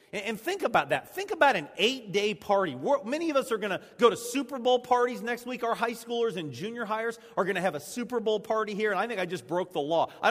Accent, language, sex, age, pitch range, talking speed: American, English, male, 40-59, 165-245 Hz, 270 wpm